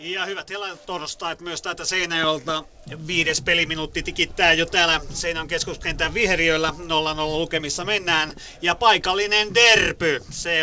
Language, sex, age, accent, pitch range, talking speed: Finnish, male, 30-49, native, 150-175 Hz, 135 wpm